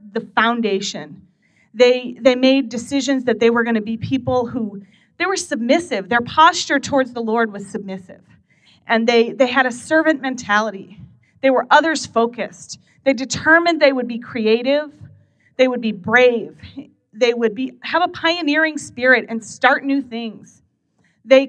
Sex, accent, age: female, American, 30-49